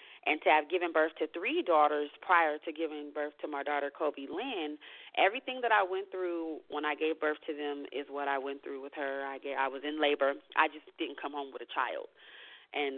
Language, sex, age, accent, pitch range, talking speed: English, female, 30-49, American, 145-175 Hz, 230 wpm